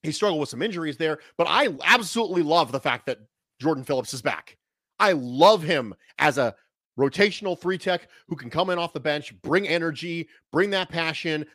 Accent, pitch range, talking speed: American, 135-180 Hz, 190 wpm